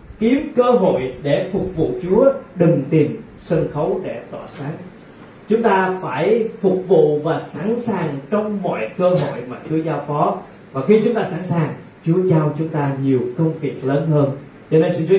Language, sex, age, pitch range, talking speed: Vietnamese, male, 20-39, 150-200 Hz, 195 wpm